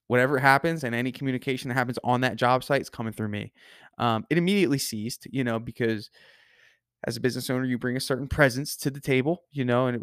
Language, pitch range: English, 115-130 Hz